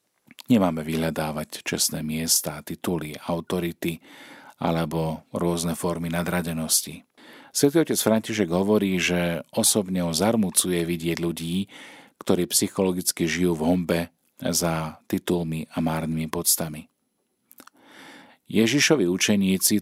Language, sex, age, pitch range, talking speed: Slovak, male, 40-59, 85-100 Hz, 95 wpm